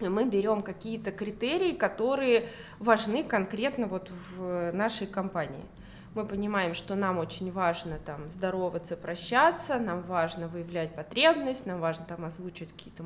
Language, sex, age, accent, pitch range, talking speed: Russian, female, 20-39, native, 180-235 Hz, 135 wpm